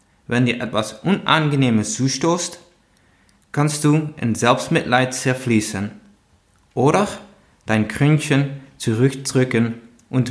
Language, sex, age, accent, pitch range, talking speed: German, male, 20-39, German, 105-145 Hz, 85 wpm